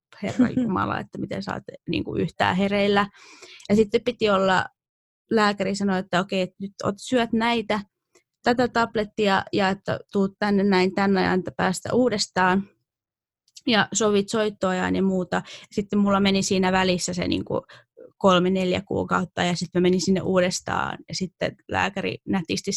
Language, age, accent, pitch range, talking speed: Finnish, 20-39, native, 180-205 Hz, 150 wpm